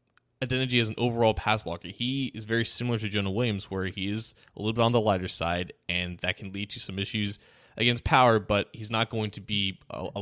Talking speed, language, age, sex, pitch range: 230 wpm, English, 20-39, male, 100-120 Hz